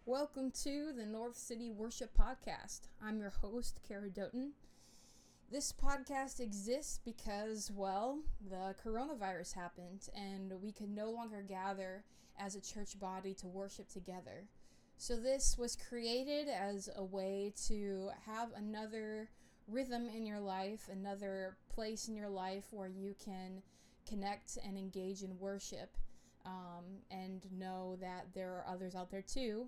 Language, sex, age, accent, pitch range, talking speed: English, female, 20-39, American, 190-235 Hz, 140 wpm